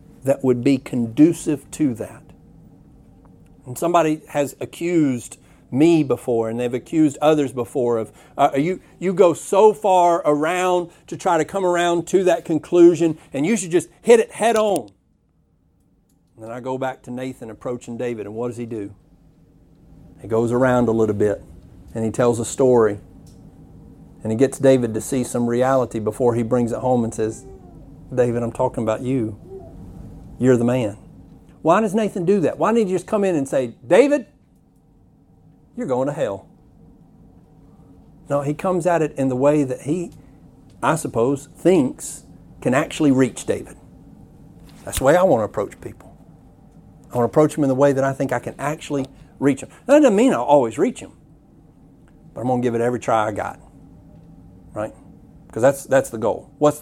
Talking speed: 180 wpm